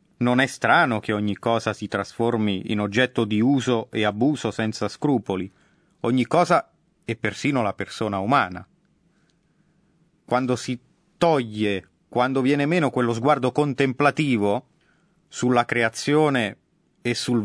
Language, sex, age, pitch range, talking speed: Italian, male, 30-49, 105-145 Hz, 125 wpm